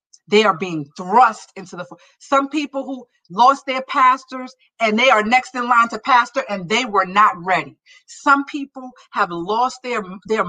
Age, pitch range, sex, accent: 50-69, 180-245 Hz, female, American